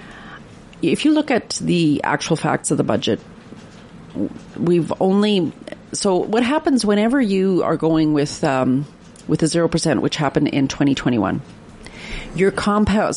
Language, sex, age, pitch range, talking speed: English, female, 40-59, 150-195 Hz, 135 wpm